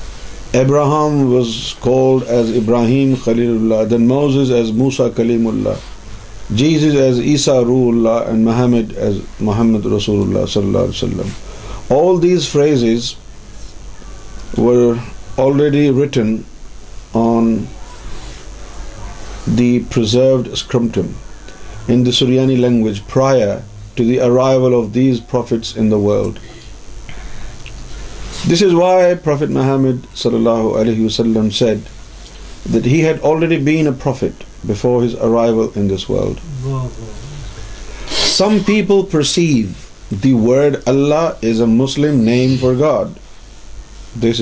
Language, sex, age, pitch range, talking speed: Urdu, male, 50-69, 110-130 Hz, 105 wpm